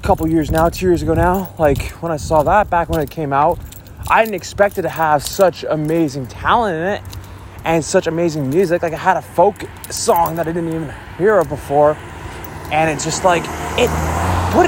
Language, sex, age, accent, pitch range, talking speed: English, male, 20-39, American, 125-195 Hz, 210 wpm